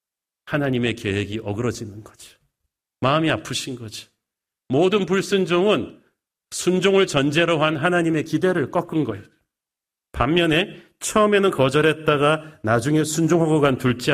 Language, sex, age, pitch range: Korean, male, 40-59, 120-160 Hz